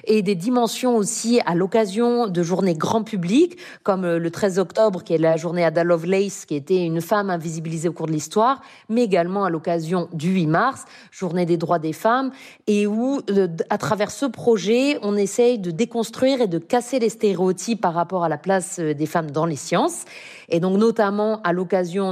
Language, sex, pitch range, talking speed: French, female, 175-215 Hz, 195 wpm